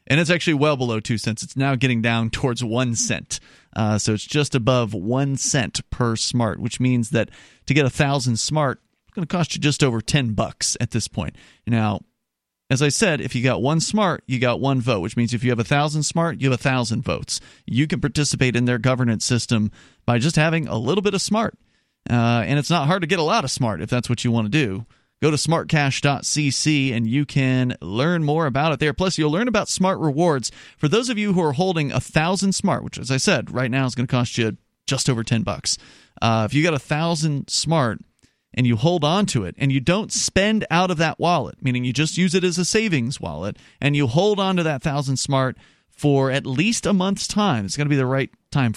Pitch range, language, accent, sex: 120-160 Hz, English, American, male